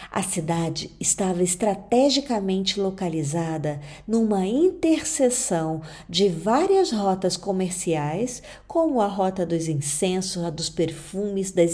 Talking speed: 100 wpm